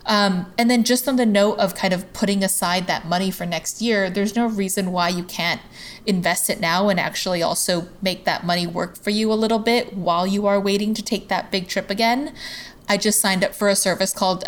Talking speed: 230 wpm